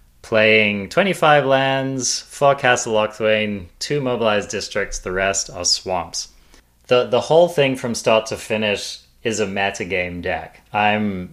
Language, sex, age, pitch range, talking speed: English, male, 30-49, 100-125 Hz, 145 wpm